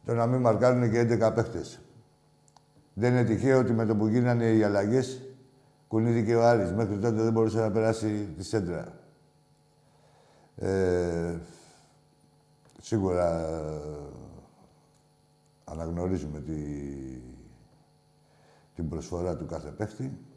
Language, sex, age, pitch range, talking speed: Greek, male, 60-79, 95-135 Hz, 100 wpm